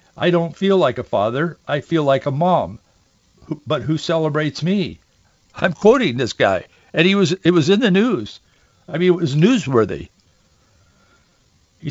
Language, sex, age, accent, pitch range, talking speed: English, male, 60-79, American, 120-170 Hz, 165 wpm